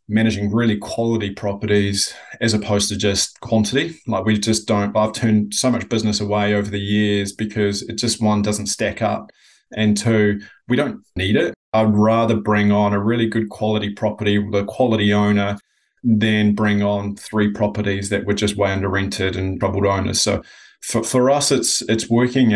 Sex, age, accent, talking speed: male, 20-39, Australian, 180 wpm